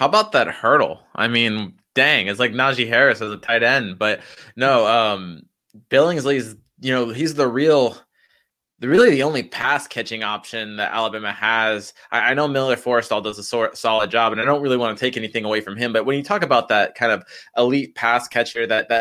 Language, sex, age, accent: English, male, 20-39, American